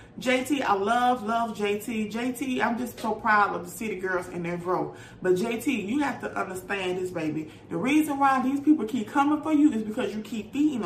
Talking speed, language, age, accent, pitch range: 215 wpm, English, 30-49, American, 220-285 Hz